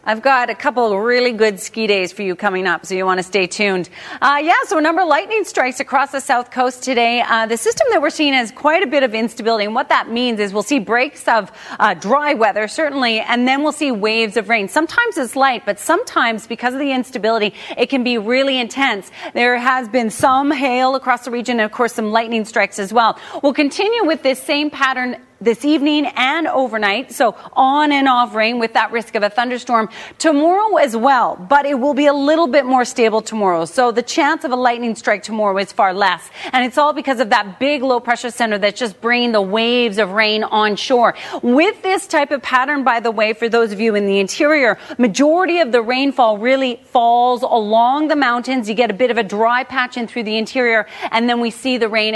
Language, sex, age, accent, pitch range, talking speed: English, female, 30-49, American, 220-275 Hz, 230 wpm